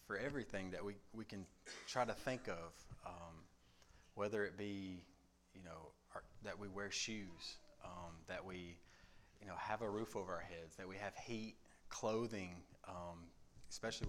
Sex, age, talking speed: male, 30-49, 160 wpm